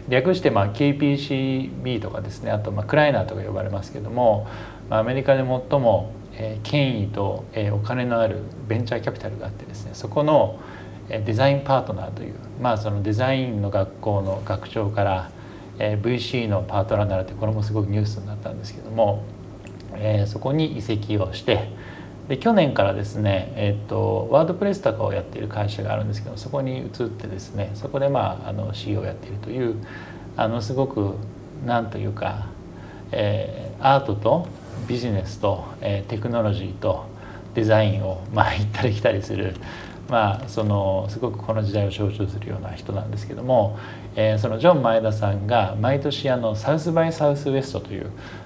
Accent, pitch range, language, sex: Japanese, 100-120 Hz, English, male